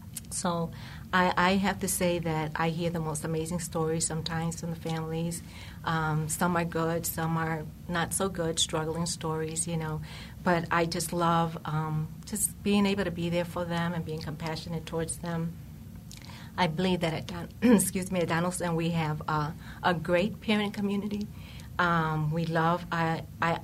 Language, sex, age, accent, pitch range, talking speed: English, female, 40-59, American, 160-175 Hz, 165 wpm